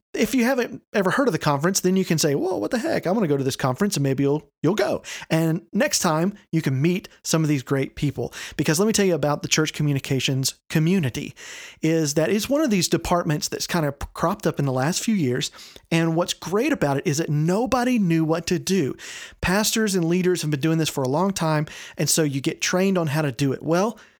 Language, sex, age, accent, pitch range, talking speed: English, male, 40-59, American, 145-190 Hz, 250 wpm